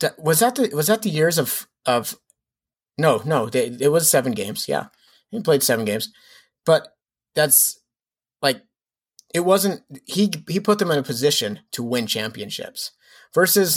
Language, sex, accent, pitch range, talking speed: English, male, American, 125-150 Hz, 155 wpm